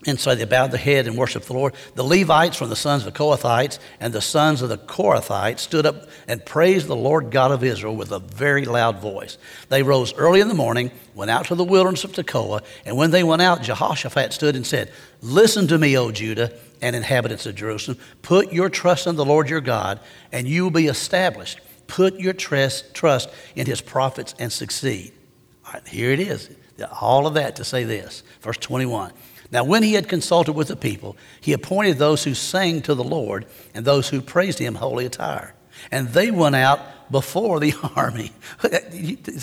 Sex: male